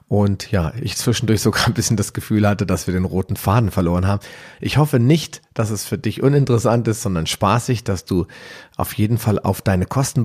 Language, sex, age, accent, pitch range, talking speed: German, male, 40-59, German, 95-115 Hz, 210 wpm